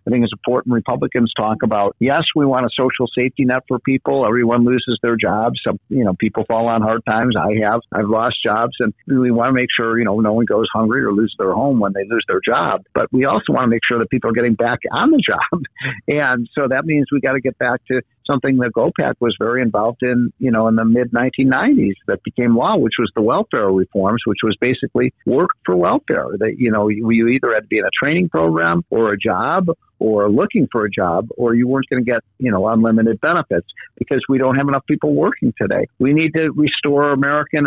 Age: 50-69